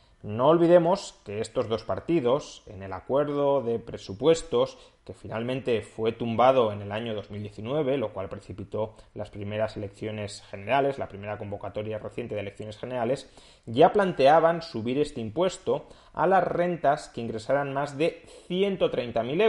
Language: Spanish